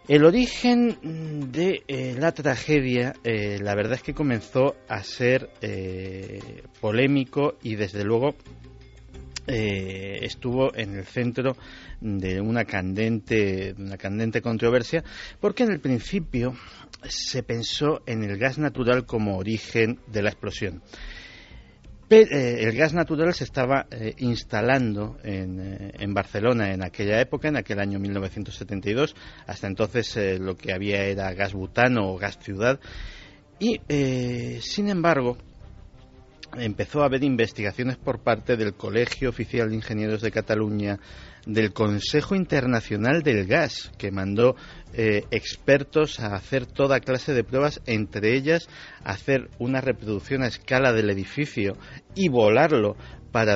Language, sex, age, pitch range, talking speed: Spanish, male, 50-69, 100-130 Hz, 130 wpm